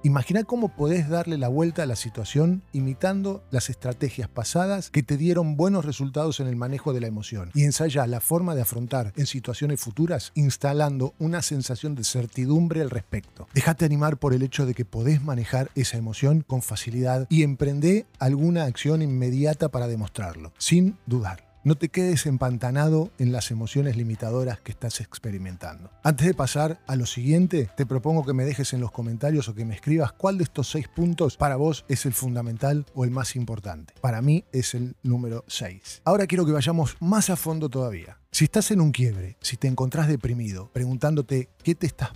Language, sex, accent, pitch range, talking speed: Spanish, male, Argentinian, 120-155 Hz, 190 wpm